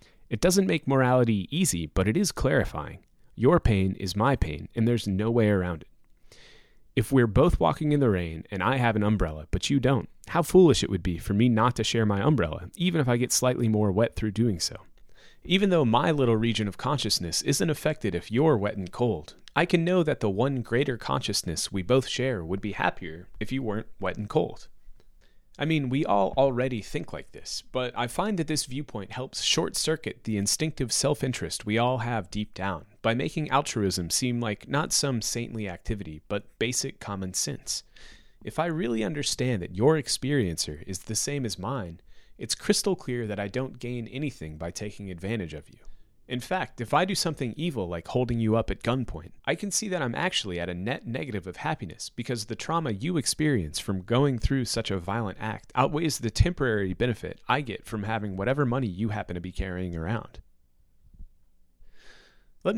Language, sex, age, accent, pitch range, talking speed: English, male, 30-49, American, 100-135 Hz, 200 wpm